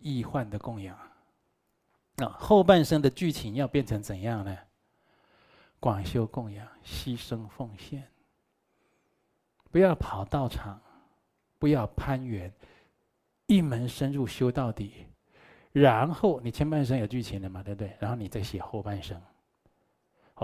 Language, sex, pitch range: Chinese, male, 105-140 Hz